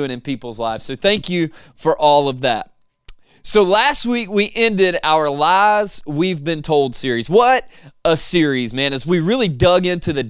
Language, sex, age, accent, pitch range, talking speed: English, male, 30-49, American, 140-180 Hz, 185 wpm